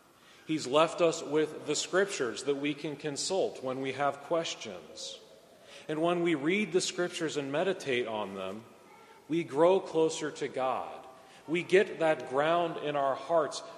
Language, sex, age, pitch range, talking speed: English, male, 40-59, 135-170 Hz, 155 wpm